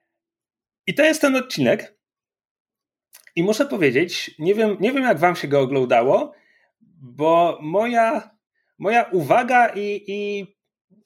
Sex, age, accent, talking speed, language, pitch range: male, 30-49, native, 120 wpm, Polish, 170-220 Hz